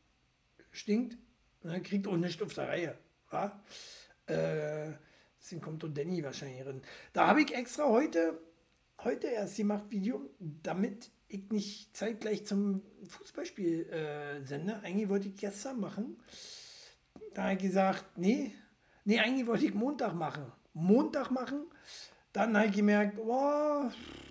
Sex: male